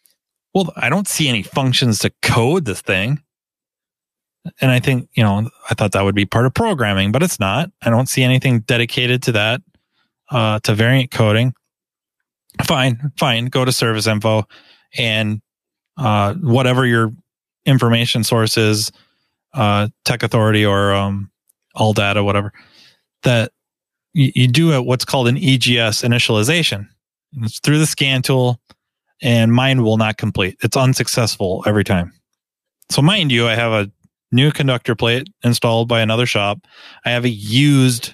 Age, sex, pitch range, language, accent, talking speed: 20-39, male, 110-145 Hz, English, American, 155 wpm